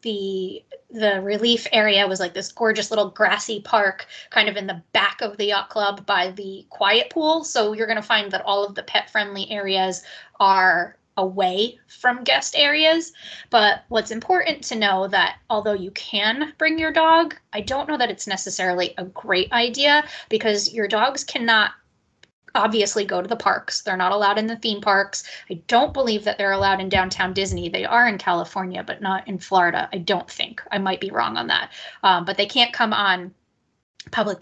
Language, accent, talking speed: English, American, 195 wpm